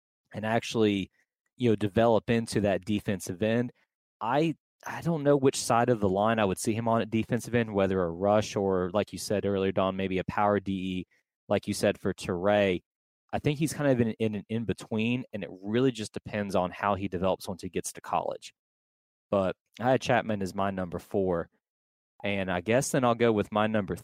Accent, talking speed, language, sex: American, 210 wpm, English, male